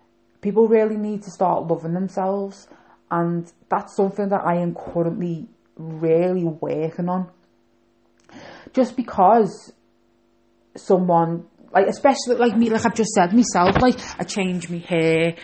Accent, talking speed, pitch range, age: British, 130 wpm, 160-195 Hz, 30-49